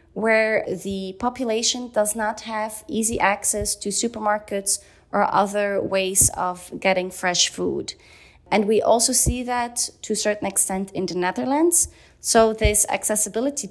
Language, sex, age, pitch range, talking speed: English, female, 20-39, 175-220 Hz, 140 wpm